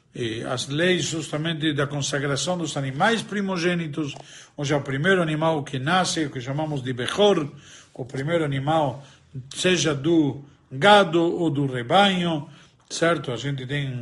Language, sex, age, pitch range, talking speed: Portuguese, male, 50-69, 140-175 Hz, 140 wpm